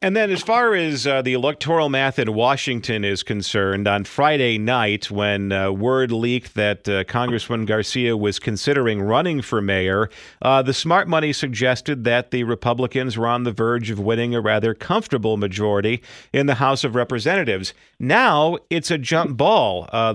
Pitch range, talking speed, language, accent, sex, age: 115-150 Hz, 175 wpm, English, American, male, 50-69